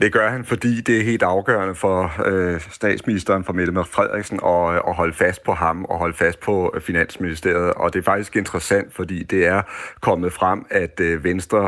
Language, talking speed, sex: Danish, 205 wpm, male